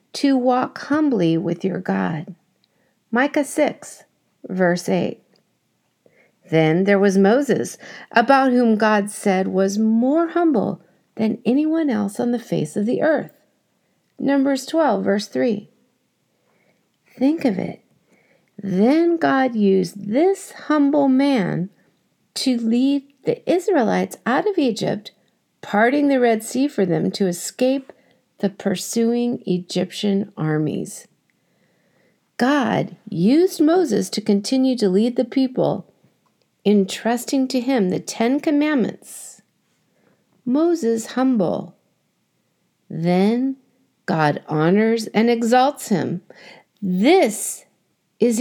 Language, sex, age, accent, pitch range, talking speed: English, female, 50-69, American, 195-270 Hz, 110 wpm